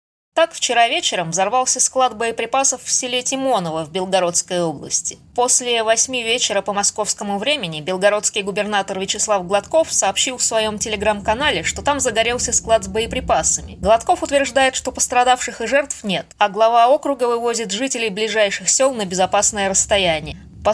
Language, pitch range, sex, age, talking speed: Russian, 205-250 Hz, female, 20-39, 145 wpm